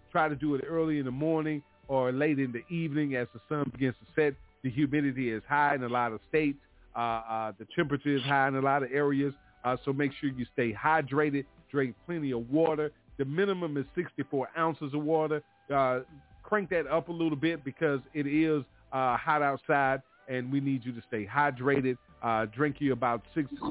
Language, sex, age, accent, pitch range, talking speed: English, male, 40-59, American, 120-150 Hz, 205 wpm